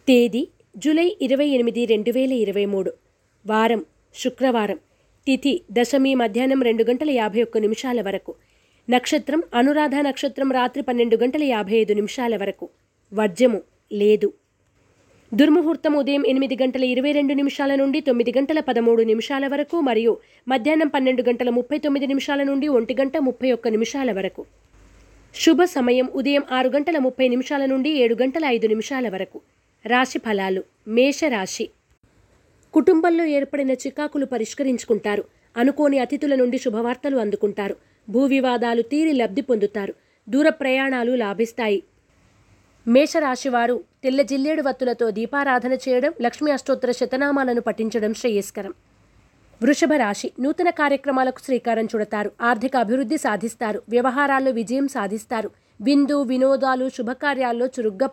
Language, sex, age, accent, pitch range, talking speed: Telugu, female, 20-39, native, 225-280 Hz, 115 wpm